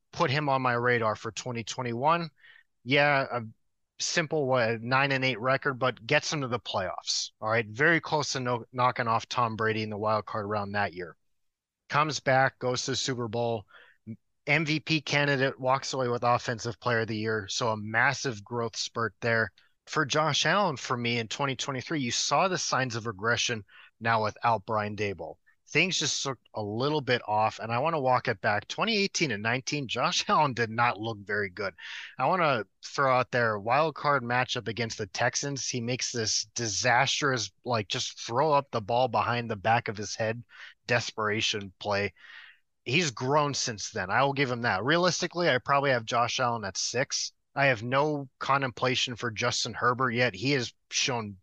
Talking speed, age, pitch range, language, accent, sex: 185 wpm, 30-49, 115-140 Hz, English, American, male